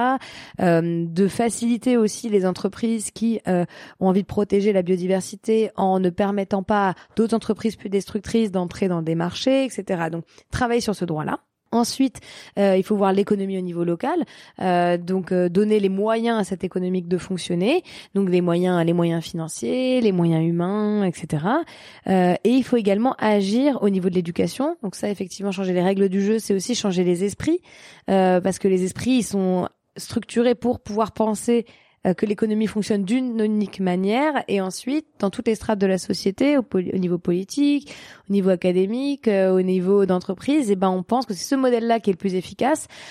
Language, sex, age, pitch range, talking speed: French, female, 20-39, 185-225 Hz, 190 wpm